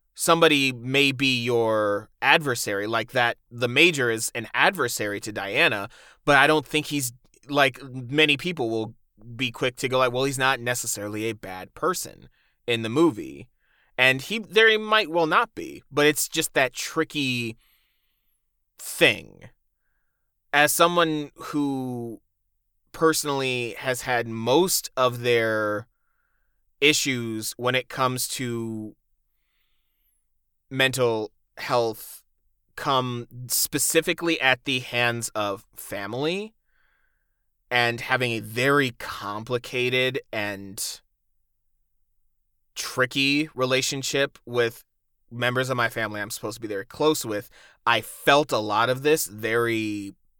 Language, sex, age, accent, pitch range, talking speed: English, male, 30-49, American, 115-145 Hz, 120 wpm